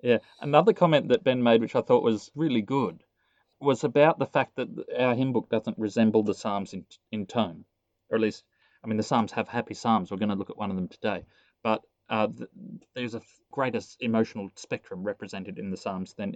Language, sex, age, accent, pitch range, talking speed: English, male, 30-49, Australian, 110-135 Hz, 215 wpm